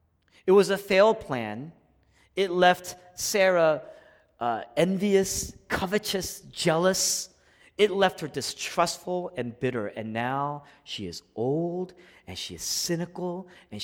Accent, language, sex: American, English, male